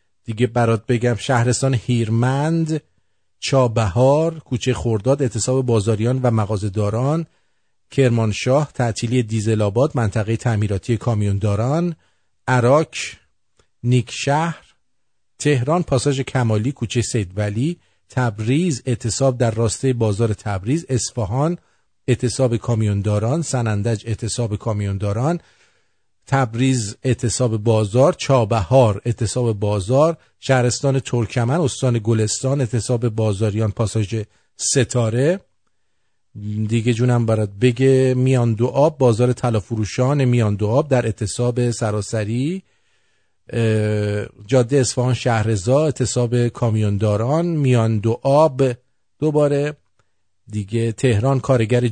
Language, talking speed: English, 85 wpm